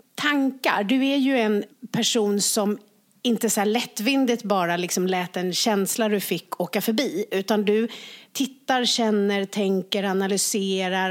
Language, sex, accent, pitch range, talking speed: English, female, Swedish, 200-250 Hz, 130 wpm